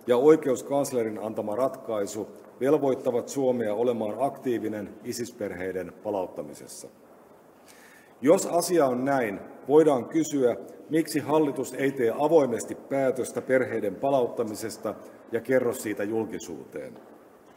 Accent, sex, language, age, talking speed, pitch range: native, male, Finnish, 50-69, 95 wpm, 110-140 Hz